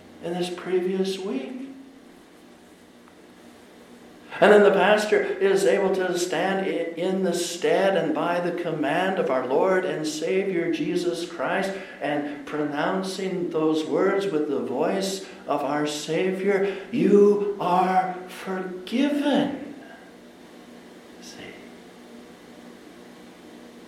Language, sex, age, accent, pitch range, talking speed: English, male, 60-79, American, 160-230 Hz, 100 wpm